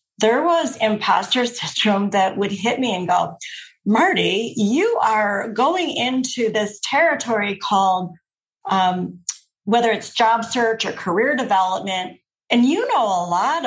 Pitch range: 200-255 Hz